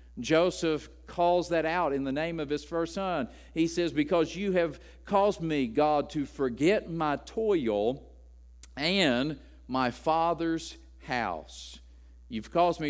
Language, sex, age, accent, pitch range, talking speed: English, male, 50-69, American, 100-150 Hz, 140 wpm